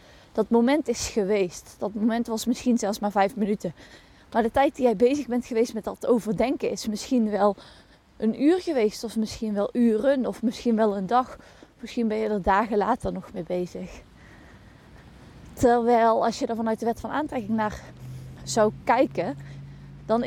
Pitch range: 210-260 Hz